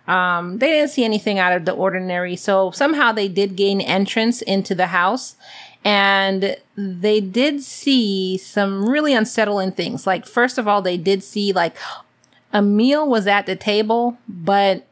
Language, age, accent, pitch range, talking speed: English, 30-49, American, 190-225 Hz, 165 wpm